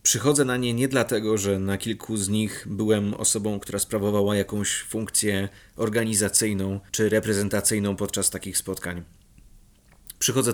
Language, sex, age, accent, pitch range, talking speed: Polish, male, 30-49, native, 100-115 Hz, 130 wpm